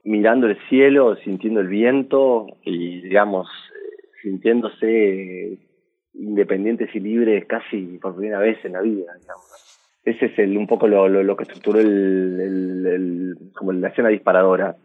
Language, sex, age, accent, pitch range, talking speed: Spanish, male, 30-49, Argentinian, 95-120 Hz, 150 wpm